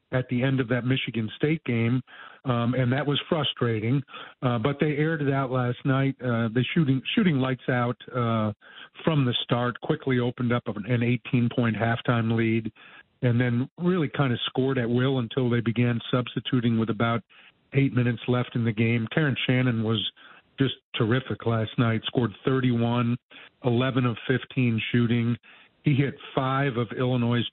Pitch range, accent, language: 115-130 Hz, American, English